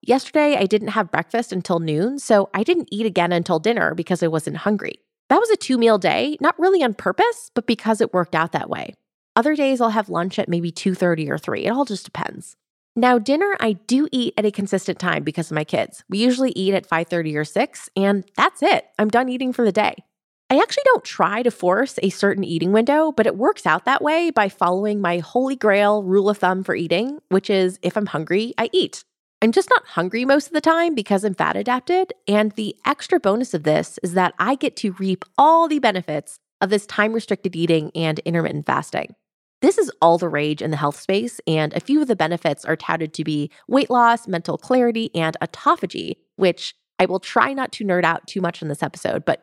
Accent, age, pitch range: American, 20-39, 175-250 Hz